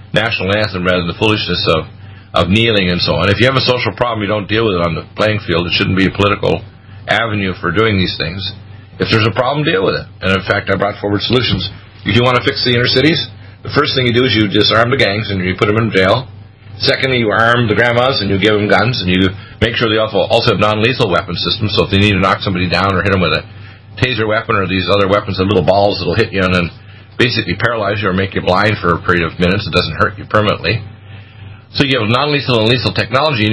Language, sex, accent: English, male, American